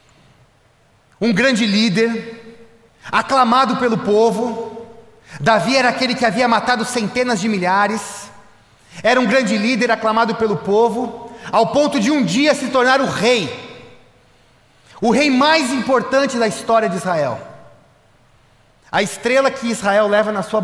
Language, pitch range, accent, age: Portuguese, 185-240 Hz, Brazilian, 30-49